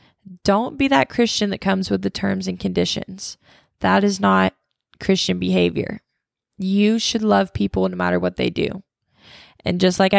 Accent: American